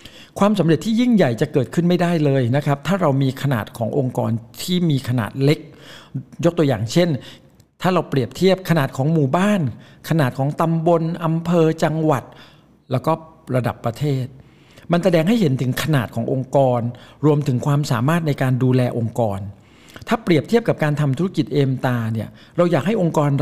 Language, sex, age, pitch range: Thai, male, 60-79, 125-160 Hz